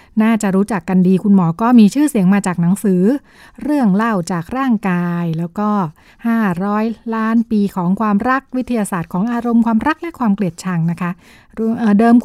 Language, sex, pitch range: Thai, female, 185-230 Hz